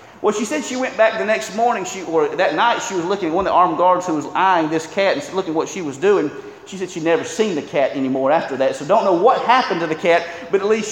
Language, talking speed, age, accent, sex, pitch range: English, 300 wpm, 40-59, American, male, 185-245 Hz